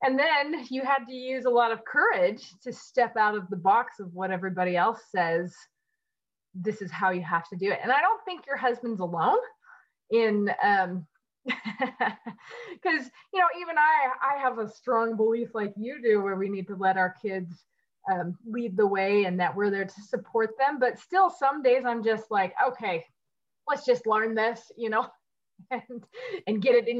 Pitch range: 205-260 Hz